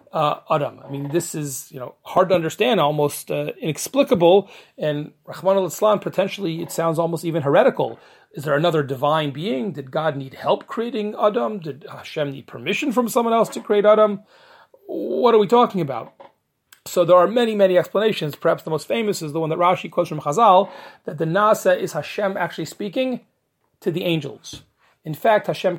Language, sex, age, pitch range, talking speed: English, male, 40-59, 155-200 Hz, 185 wpm